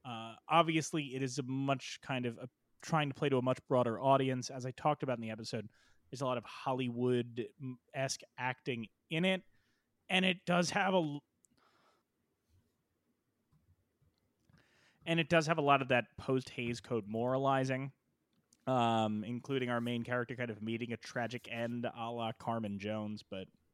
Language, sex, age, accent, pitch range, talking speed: English, male, 30-49, American, 110-135 Hz, 160 wpm